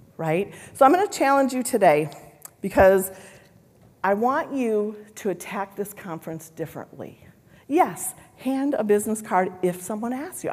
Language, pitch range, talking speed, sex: English, 165-245 Hz, 150 wpm, female